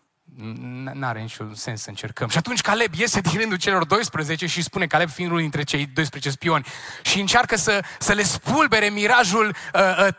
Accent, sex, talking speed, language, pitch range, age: native, male, 185 wpm, Romanian, 120-200 Hz, 20-39